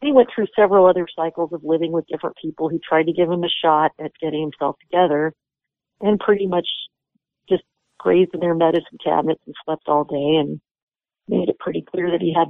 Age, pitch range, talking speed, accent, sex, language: 50-69, 150-185 Hz, 205 wpm, American, female, English